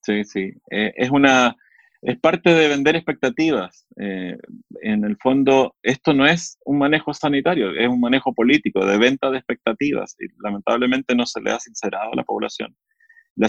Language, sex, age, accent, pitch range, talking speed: Spanish, male, 30-49, Argentinian, 105-135 Hz, 175 wpm